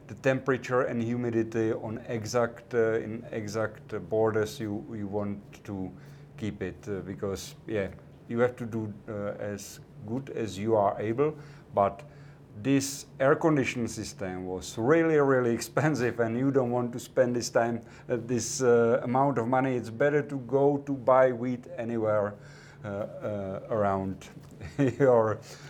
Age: 50-69